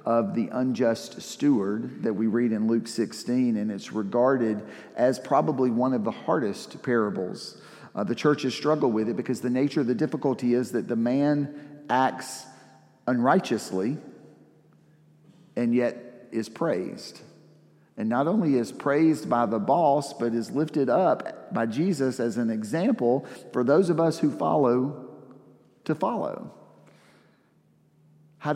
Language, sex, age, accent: English, male, 40-59, American